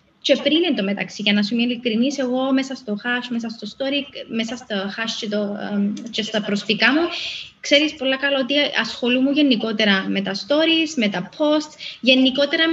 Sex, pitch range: female, 225-285 Hz